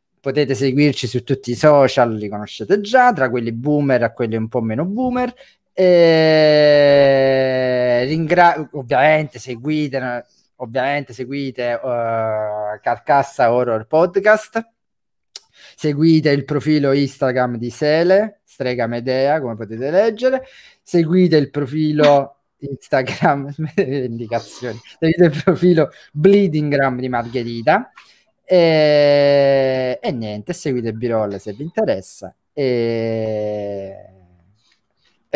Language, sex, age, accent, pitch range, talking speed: Italian, male, 20-39, native, 120-160 Hz, 105 wpm